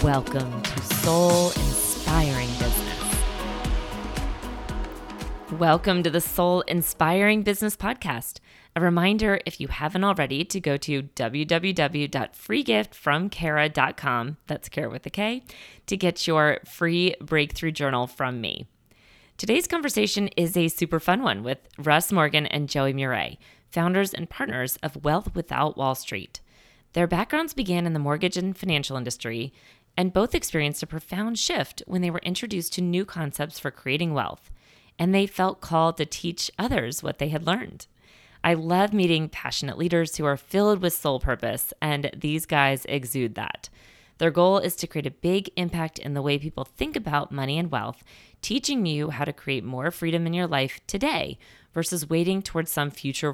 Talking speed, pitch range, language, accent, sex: 160 wpm, 140-175 Hz, English, American, female